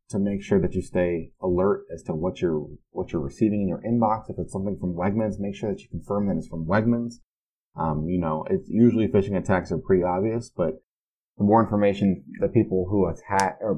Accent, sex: American, male